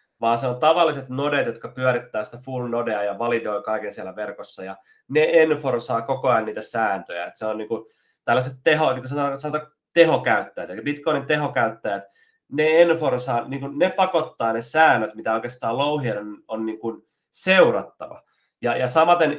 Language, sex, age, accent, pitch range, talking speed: Finnish, male, 30-49, native, 110-145 Hz, 160 wpm